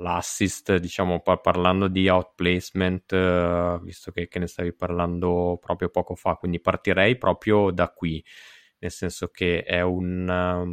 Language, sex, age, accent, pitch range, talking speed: Italian, male, 20-39, native, 90-100 Hz, 135 wpm